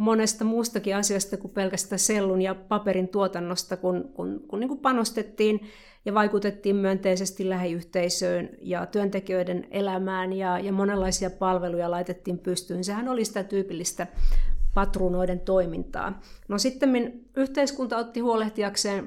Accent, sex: native, female